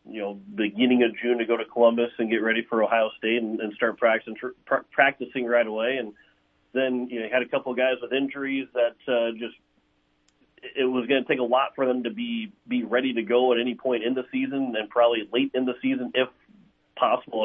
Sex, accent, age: male, American, 40-59